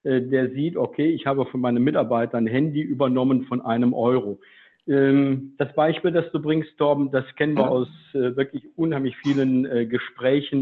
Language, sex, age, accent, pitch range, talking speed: German, male, 50-69, German, 135-160 Hz, 160 wpm